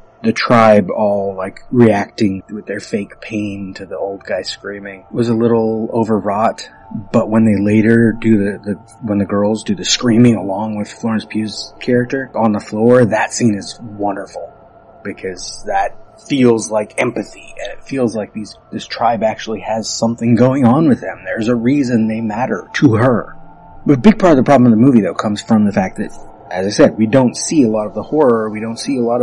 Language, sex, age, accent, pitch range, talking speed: English, male, 30-49, American, 100-120 Hz, 205 wpm